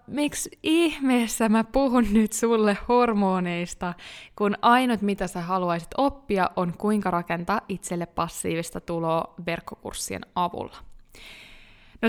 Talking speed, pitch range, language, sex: 110 wpm, 175-225 Hz, Finnish, female